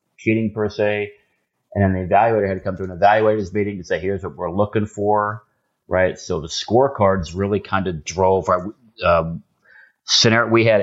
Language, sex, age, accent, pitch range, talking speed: English, male, 30-49, American, 85-105 Hz, 190 wpm